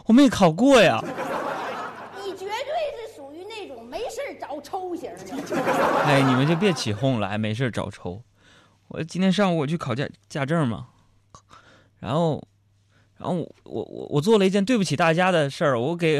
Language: Chinese